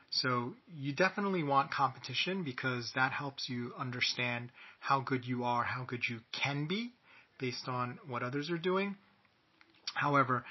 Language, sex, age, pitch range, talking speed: English, male, 30-49, 120-160 Hz, 150 wpm